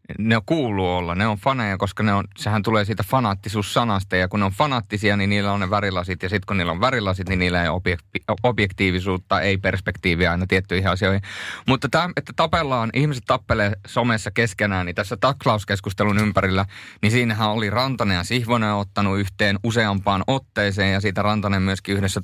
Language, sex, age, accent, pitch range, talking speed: Finnish, male, 30-49, native, 95-120 Hz, 175 wpm